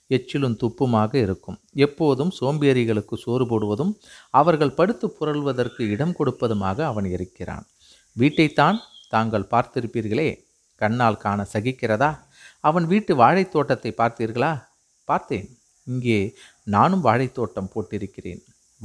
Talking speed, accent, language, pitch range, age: 95 wpm, native, Tamil, 105-140 Hz, 50-69